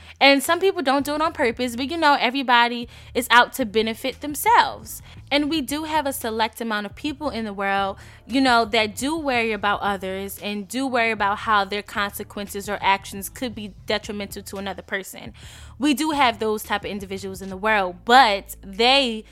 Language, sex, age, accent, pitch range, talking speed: English, female, 10-29, American, 215-275 Hz, 195 wpm